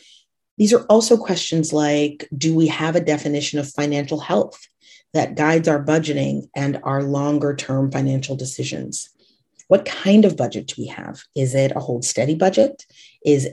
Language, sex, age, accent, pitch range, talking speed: English, female, 30-49, American, 135-165 Hz, 165 wpm